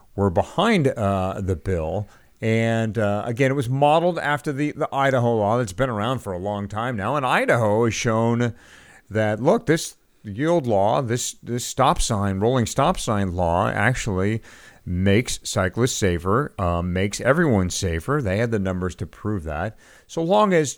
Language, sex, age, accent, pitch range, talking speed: English, male, 50-69, American, 95-130 Hz, 170 wpm